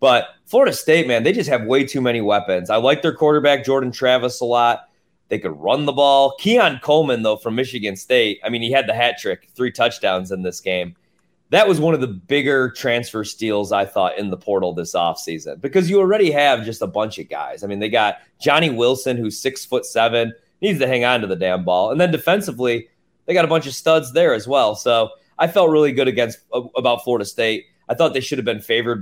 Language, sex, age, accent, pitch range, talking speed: English, male, 30-49, American, 110-155 Hz, 230 wpm